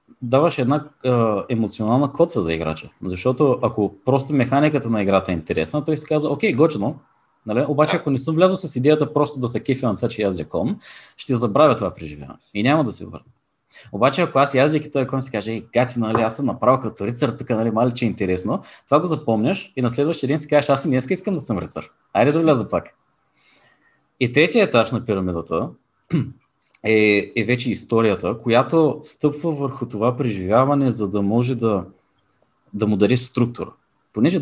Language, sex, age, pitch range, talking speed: Bulgarian, male, 30-49, 110-145 Hz, 185 wpm